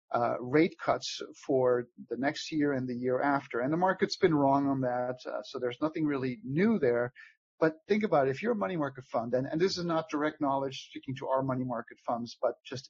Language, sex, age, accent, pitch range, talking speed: English, male, 50-69, American, 130-160 Hz, 235 wpm